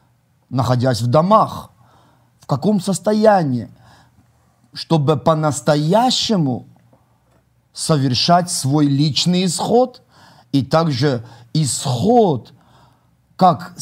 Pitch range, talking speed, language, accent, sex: 135-175 Hz, 70 wpm, Russian, native, male